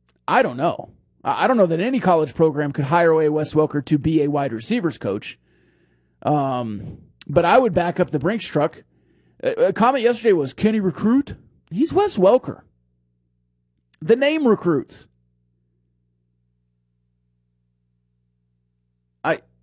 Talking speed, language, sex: 140 wpm, English, male